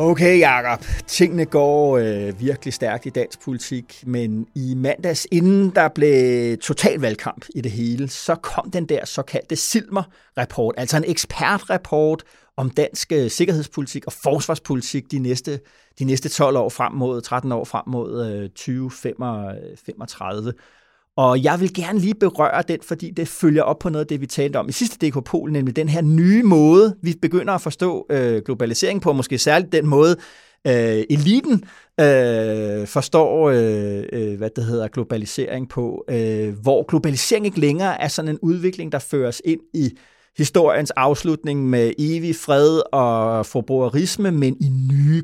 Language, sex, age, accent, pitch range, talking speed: Danish, male, 30-49, native, 125-160 Hz, 160 wpm